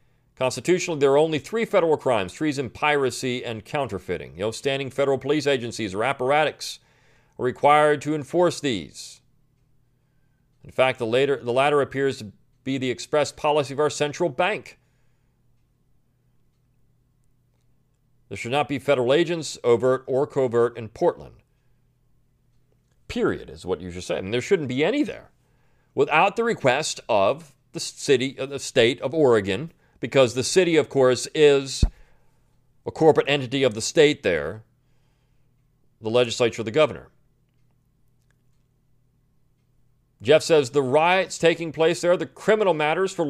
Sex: male